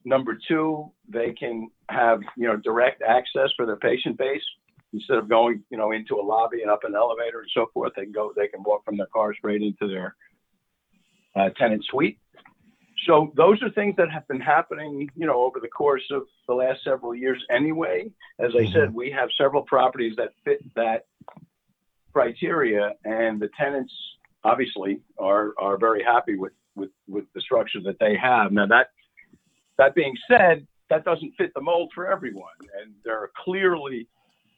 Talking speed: 180 wpm